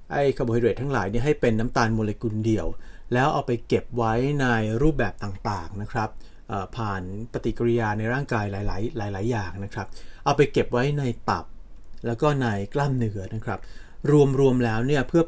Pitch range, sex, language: 105-135 Hz, male, Thai